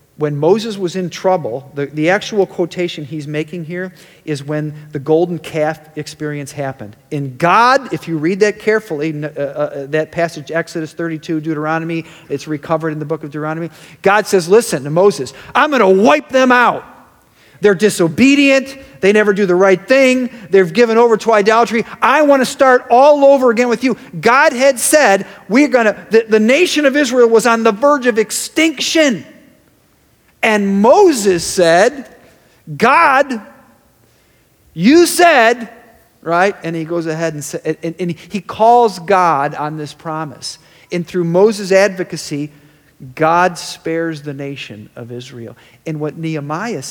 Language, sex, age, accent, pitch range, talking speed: English, male, 40-59, American, 155-225 Hz, 155 wpm